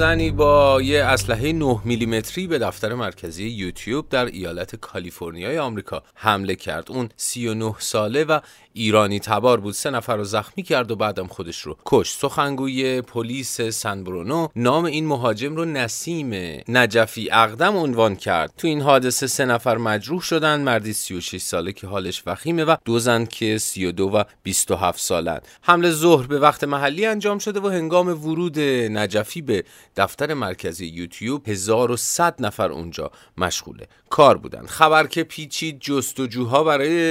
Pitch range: 110-155 Hz